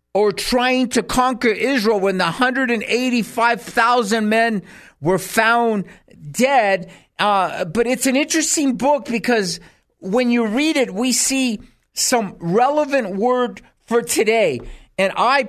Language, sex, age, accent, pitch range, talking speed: English, male, 50-69, American, 190-250 Hz, 125 wpm